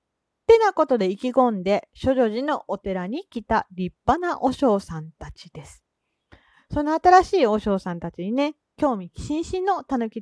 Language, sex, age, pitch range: Japanese, female, 40-59, 190-290 Hz